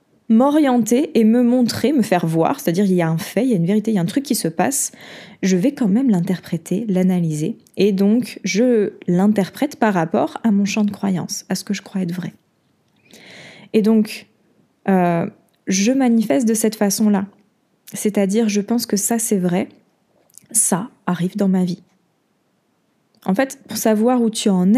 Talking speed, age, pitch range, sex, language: 185 wpm, 20-39, 185-235 Hz, female, French